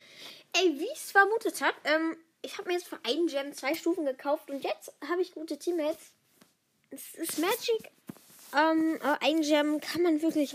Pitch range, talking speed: 260-315 Hz, 175 wpm